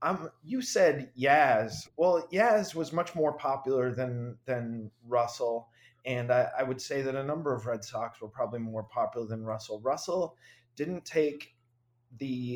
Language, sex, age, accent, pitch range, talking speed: English, male, 30-49, American, 120-140 Hz, 160 wpm